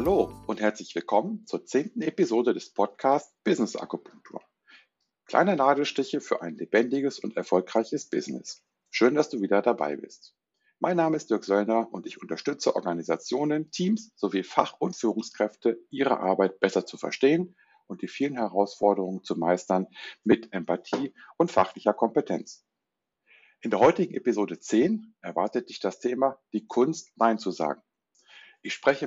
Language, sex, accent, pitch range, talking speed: German, male, German, 100-130 Hz, 145 wpm